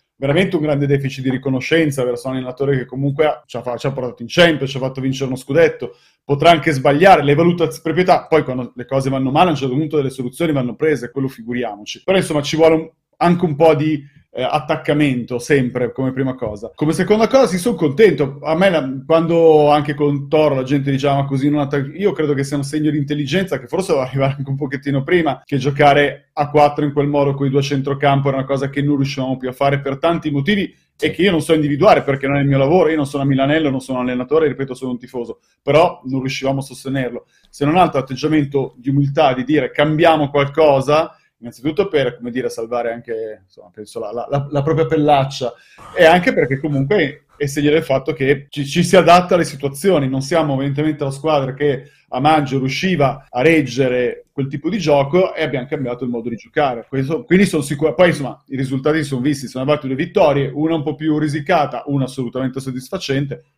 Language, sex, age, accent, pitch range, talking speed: Italian, male, 30-49, native, 130-155 Hz, 220 wpm